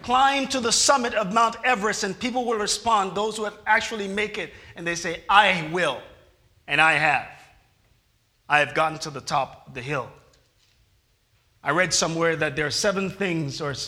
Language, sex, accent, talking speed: English, male, American, 185 wpm